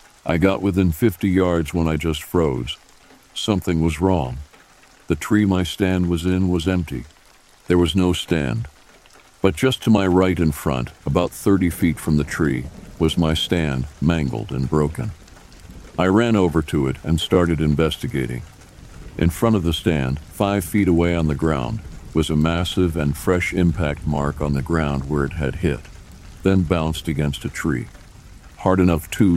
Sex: male